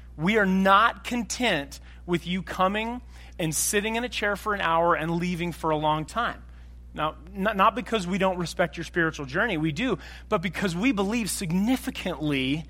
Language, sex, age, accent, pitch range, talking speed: English, male, 30-49, American, 140-205 Hz, 175 wpm